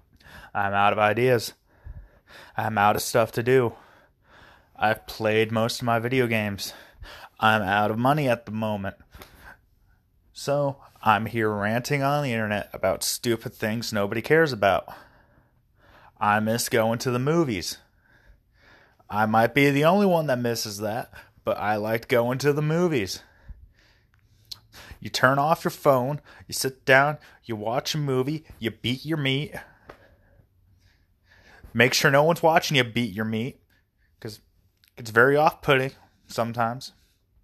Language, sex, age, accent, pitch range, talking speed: English, male, 30-49, American, 100-135 Hz, 145 wpm